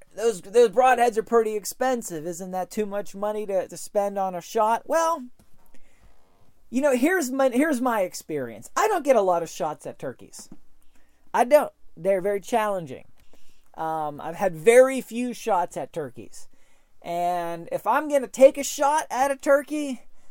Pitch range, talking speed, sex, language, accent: 180-255 Hz, 170 wpm, male, English, American